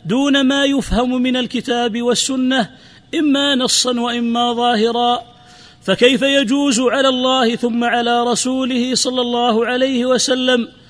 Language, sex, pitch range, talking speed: Arabic, male, 235-260 Hz, 115 wpm